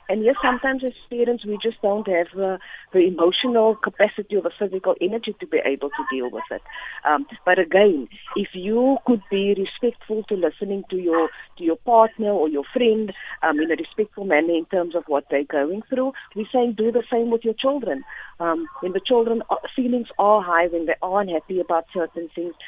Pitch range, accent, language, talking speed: 170-235 Hz, Indian, English, 205 wpm